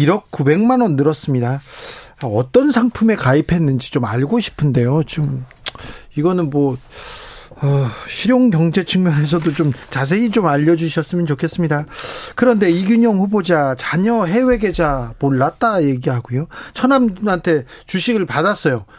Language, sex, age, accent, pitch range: Korean, male, 40-59, native, 145-210 Hz